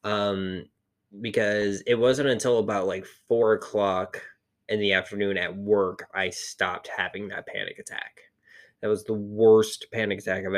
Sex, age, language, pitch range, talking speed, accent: male, 20-39, English, 100-130 Hz, 155 wpm, American